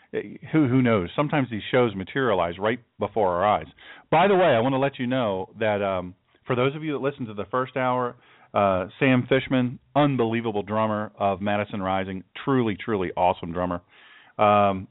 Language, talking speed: English, 180 wpm